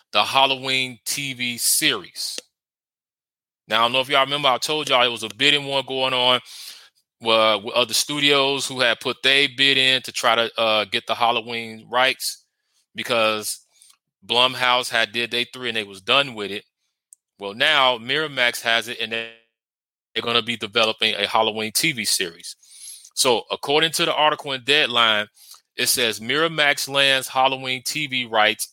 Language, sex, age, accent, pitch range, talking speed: English, male, 30-49, American, 110-130 Hz, 165 wpm